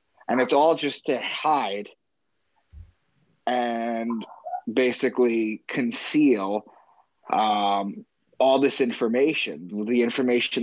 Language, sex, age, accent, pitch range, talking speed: English, male, 30-49, American, 110-130 Hz, 85 wpm